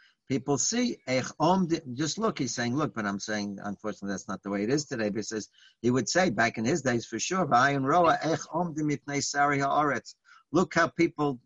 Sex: male